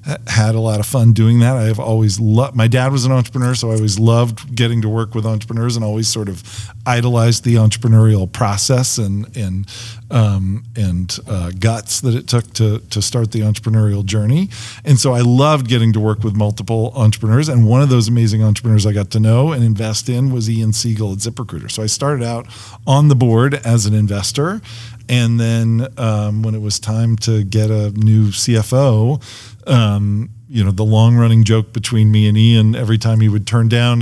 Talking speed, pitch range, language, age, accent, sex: 205 wpm, 110-120 Hz, Hebrew, 40-59, American, male